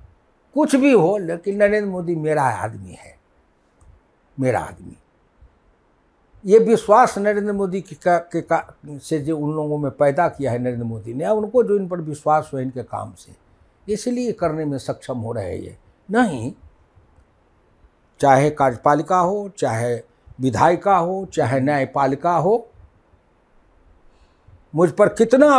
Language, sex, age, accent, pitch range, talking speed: Hindi, male, 60-79, native, 125-205 Hz, 135 wpm